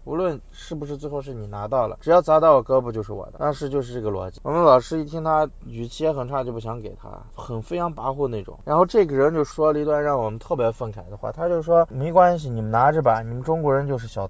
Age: 20-39